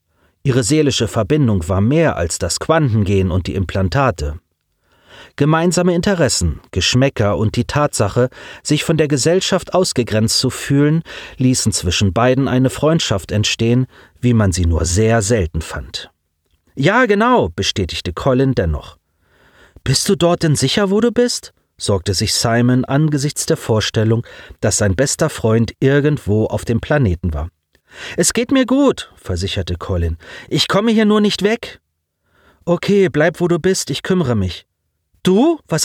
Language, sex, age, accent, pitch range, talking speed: German, male, 40-59, German, 95-160 Hz, 145 wpm